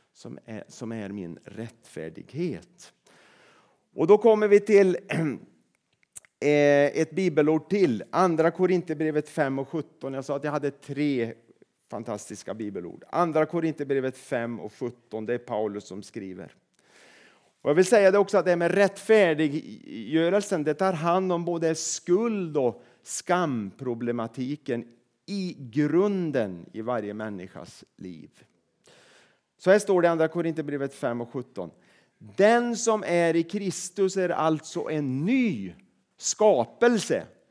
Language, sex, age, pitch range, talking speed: Swedish, male, 40-59, 135-190 Hz, 135 wpm